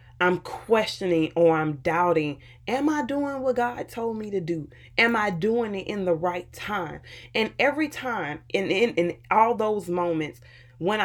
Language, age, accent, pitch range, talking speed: English, 20-39, American, 160-205 Hz, 170 wpm